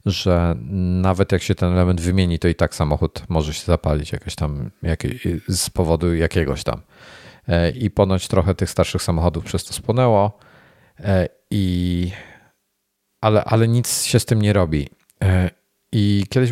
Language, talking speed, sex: Polish, 145 wpm, male